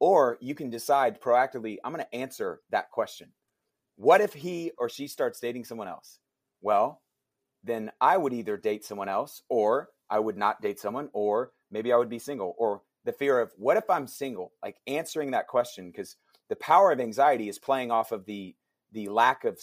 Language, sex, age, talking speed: English, male, 30-49, 200 wpm